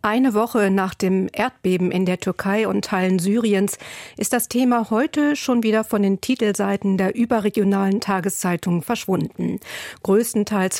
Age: 50-69